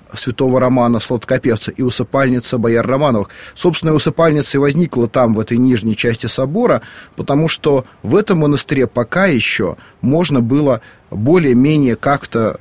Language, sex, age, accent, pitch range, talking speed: Russian, male, 30-49, native, 110-140 Hz, 135 wpm